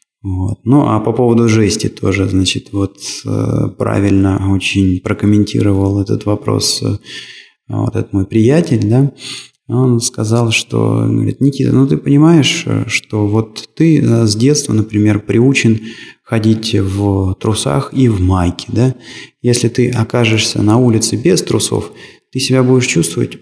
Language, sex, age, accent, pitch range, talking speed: Russian, male, 20-39, native, 105-130 Hz, 130 wpm